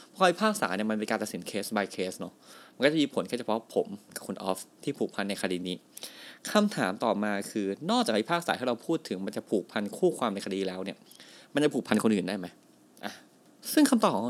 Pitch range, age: 105-160 Hz, 20-39